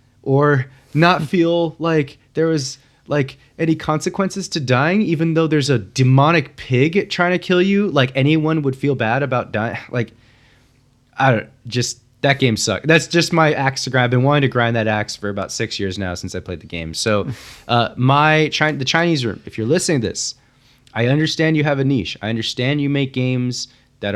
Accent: American